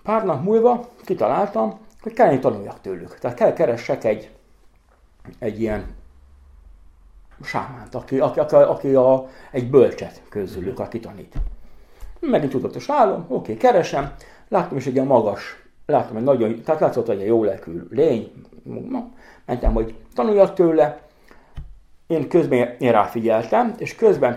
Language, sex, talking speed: Hungarian, male, 145 wpm